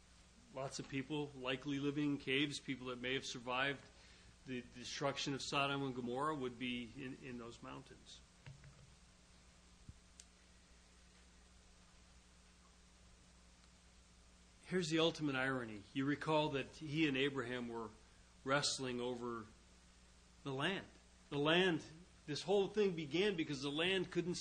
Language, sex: English, male